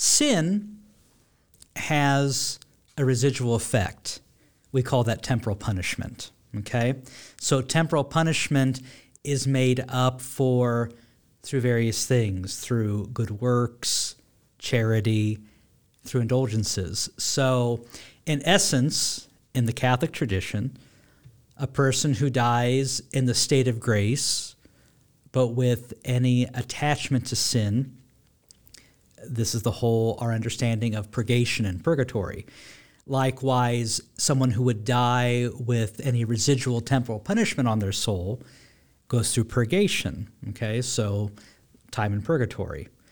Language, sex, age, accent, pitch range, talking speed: English, male, 50-69, American, 115-135 Hz, 110 wpm